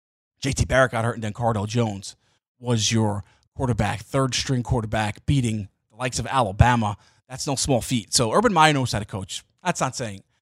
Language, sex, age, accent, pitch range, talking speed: English, male, 20-39, American, 110-140 Hz, 180 wpm